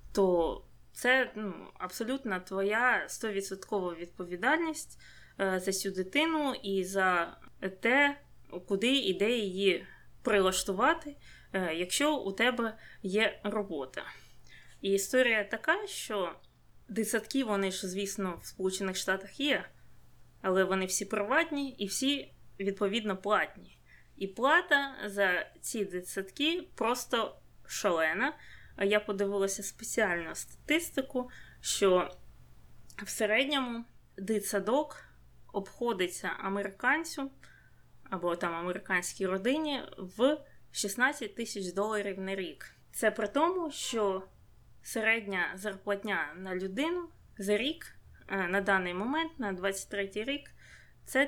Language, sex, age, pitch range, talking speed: Ukrainian, female, 20-39, 190-255 Hz, 100 wpm